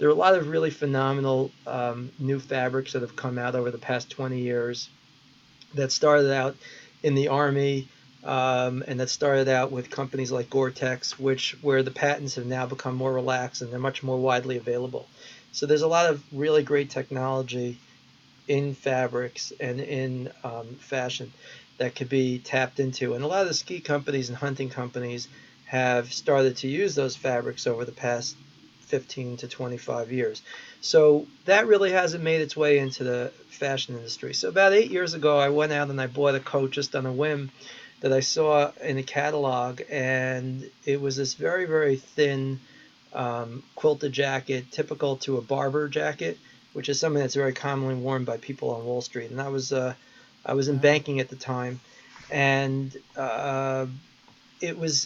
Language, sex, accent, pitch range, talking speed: English, male, American, 130-145 Hz, 180 wpm